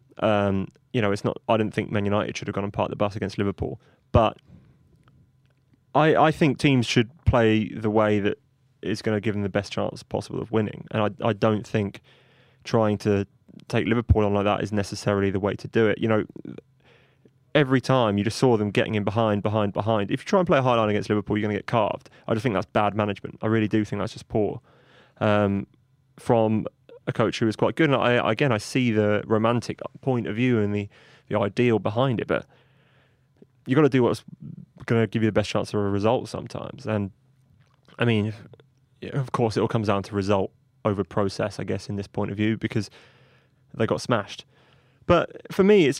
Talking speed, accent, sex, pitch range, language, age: 220 wpm, British, male, 105-130 Hz, English, 20-39